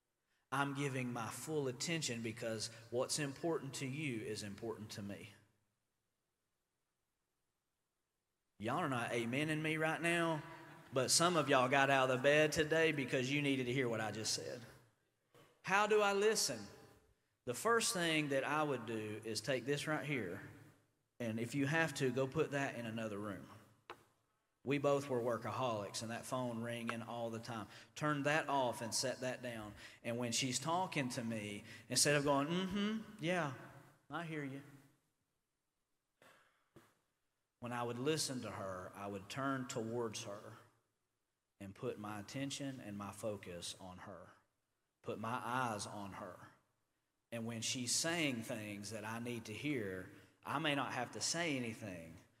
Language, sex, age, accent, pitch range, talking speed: English, male, 40-59, American, 110-145 Hz, 165 wpm